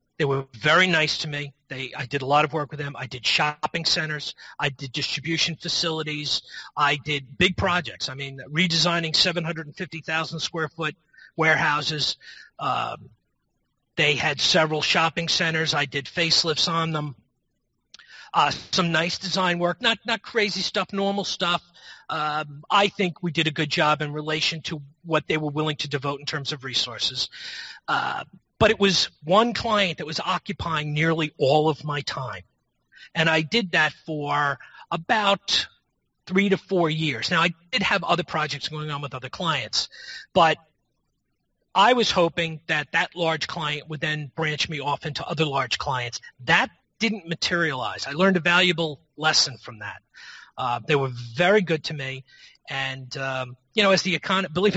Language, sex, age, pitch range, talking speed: English, male, 40-59, 145-175 Hz, 170 wpm